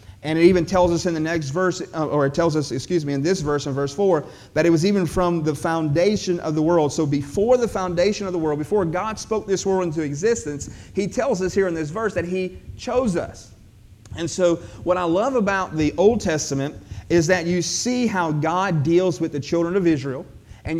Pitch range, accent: 145-180 Hz, American